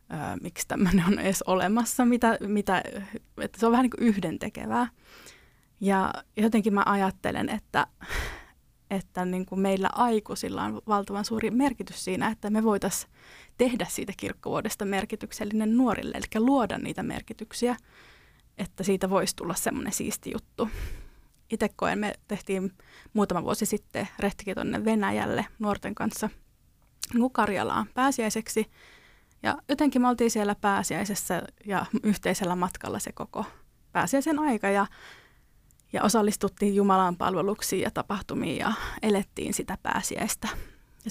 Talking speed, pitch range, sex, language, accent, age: 125 wpm, 195-235 Hz, female, Finnish, native, 20-39